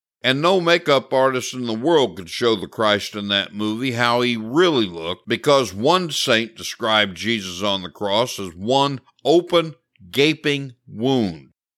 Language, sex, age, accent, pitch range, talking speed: English, male, 60-79, American, 120-170 Hz, 160 wpm